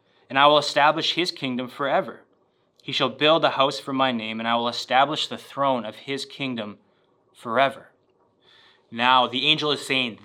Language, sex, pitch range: English, male, 125-150 Hz